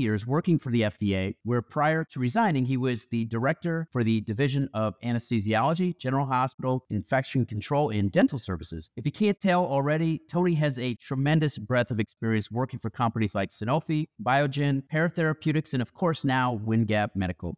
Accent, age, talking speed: American, 30-49, 170 wpm